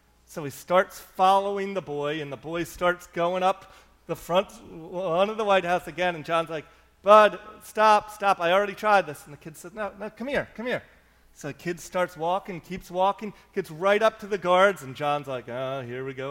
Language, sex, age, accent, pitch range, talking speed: English, male, 30-49, American, 140-195 Hz, 215 wpm